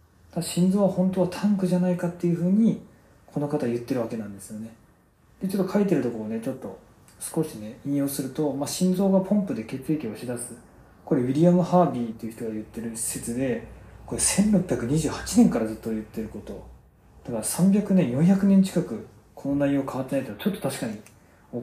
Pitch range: 110-175 Hz